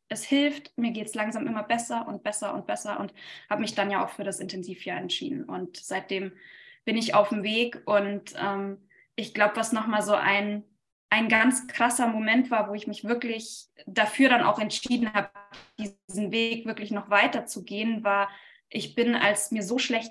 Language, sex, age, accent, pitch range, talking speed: German, female, 20-39, German, 210-245 Hz, 195 wpm